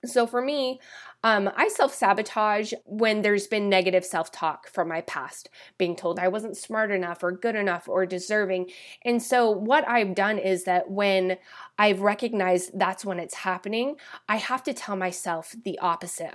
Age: 20-39